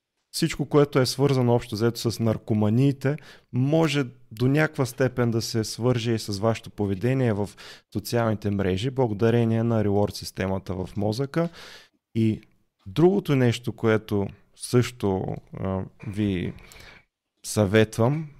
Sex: male